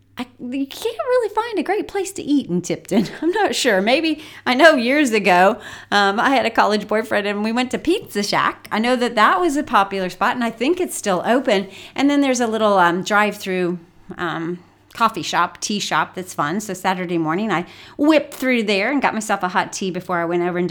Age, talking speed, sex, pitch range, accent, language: 40-59, 230 wpm, female, 180-245 Hz, American, English